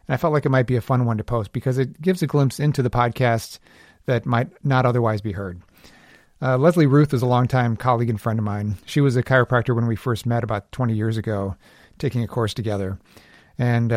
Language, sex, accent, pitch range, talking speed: English, male, American, 110-130 Hz, 230 wpm